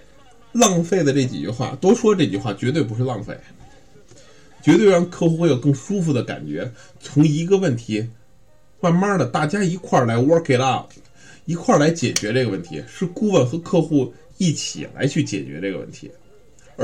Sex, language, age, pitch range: male, Chinese, 20-39, 115-150 Hz